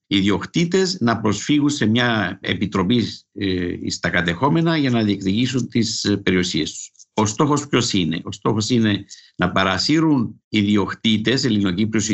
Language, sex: Greek, male